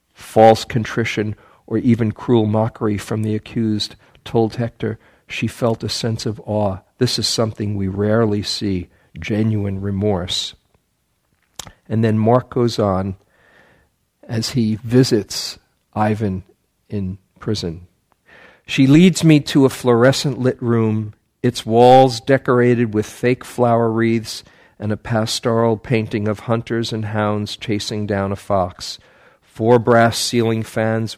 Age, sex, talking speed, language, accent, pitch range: 50-69, male, 130 wpm, English, American, 105-120 Hz